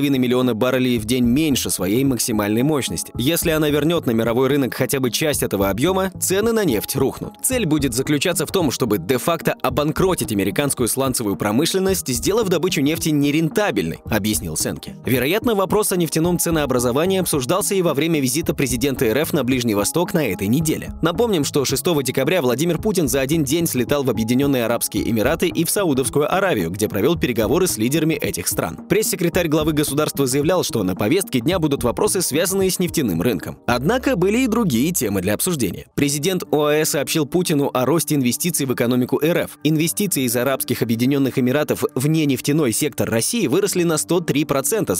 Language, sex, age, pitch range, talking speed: Russian, male, 20-39, 125-170 Hz, 170 wpm